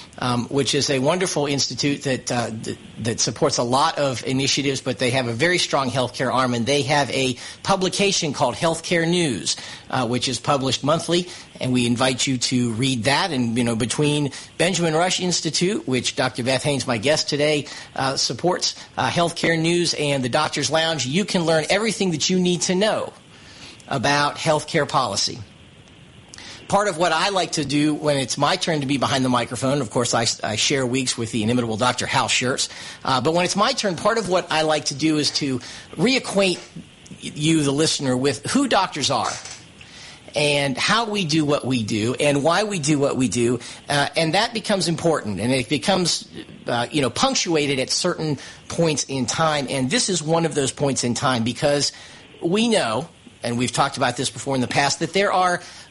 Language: English